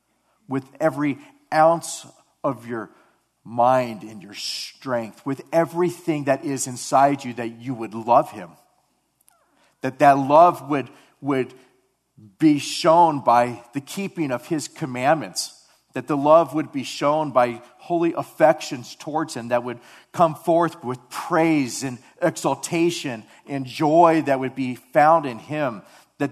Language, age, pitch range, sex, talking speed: English, 40-59, 135-165 Hz, male, 140 wpm